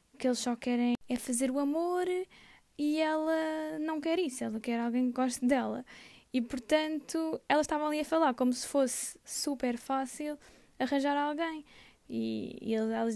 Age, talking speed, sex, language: 10-29, 170 wpm, female, Portuguese